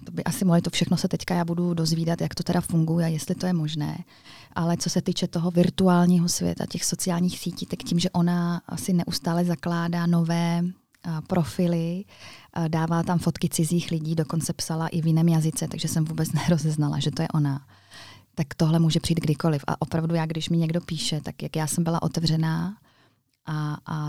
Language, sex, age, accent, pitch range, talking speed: Czech, female, 20-39, native, 160-175 Hz, 190 wpm